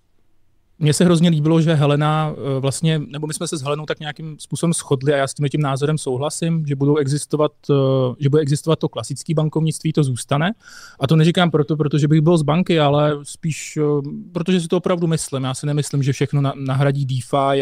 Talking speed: 200 wpm